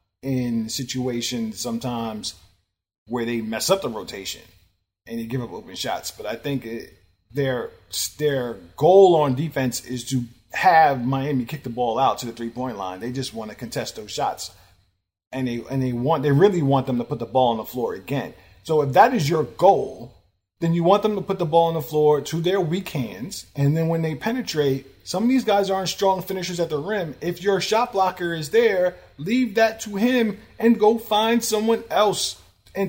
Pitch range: 120-180 Hz